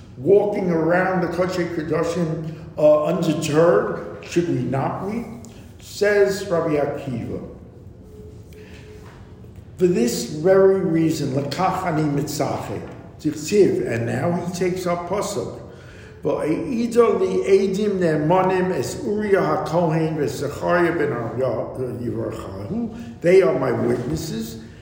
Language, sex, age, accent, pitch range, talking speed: English, male, 50-69, American, 140-200 Hz, 100 wpm